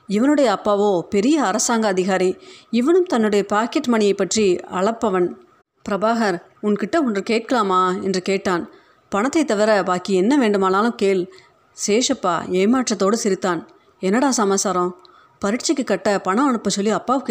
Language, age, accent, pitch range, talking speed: Tamil, 30-49, native, 190-240 Hz, 120 wpm